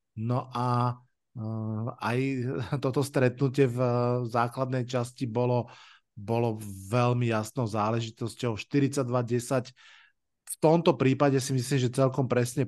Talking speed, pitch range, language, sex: 115 wpm, 120-140 Hz, Slovak, male